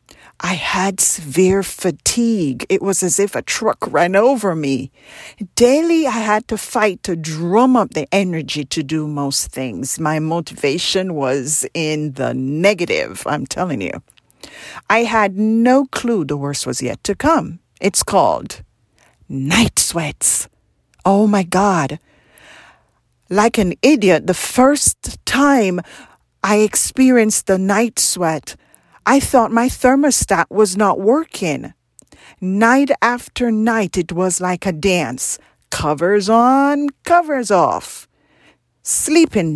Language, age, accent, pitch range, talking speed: English, 50-69, American, 165-240 Hz, 125 wpm